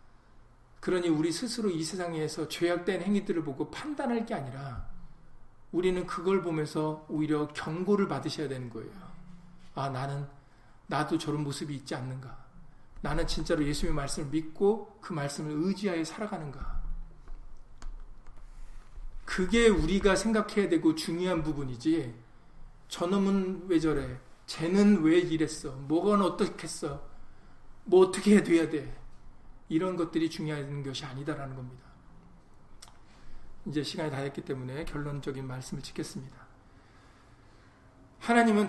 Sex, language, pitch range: male, Korean, 145-185 Hz